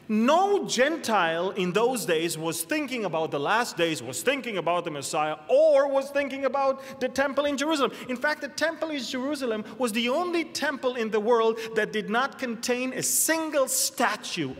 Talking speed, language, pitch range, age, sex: 180 wpm, English, 175-275 Hz, 30-49, male